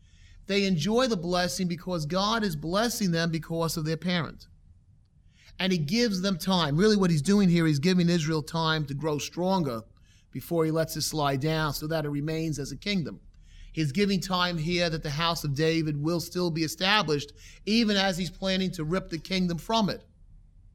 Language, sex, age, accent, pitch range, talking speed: English, male, 30-49, American, 120-190 Hz, 190 wpm